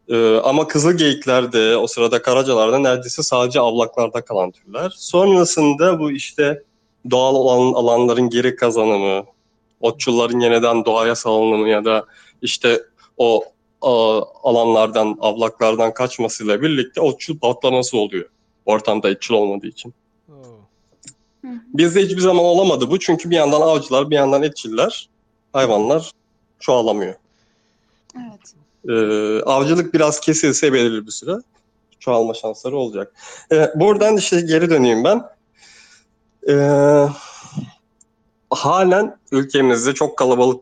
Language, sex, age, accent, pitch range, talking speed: Turkish, male, 30-49, native, 115-150 Hz, 110 wpm